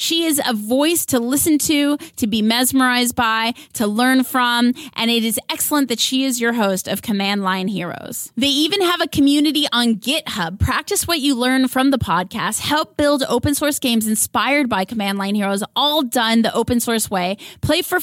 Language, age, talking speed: English, 20-39, 195 wpm